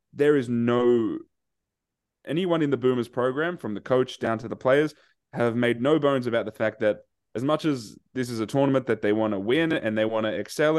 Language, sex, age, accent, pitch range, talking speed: English, male, 20-39, Australian, 110-130 Hz, 220 wpm